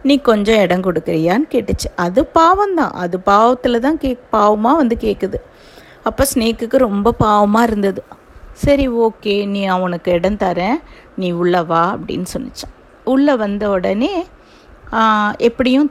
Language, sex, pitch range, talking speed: Tamil, female, 185-245 Hz, 125 wpm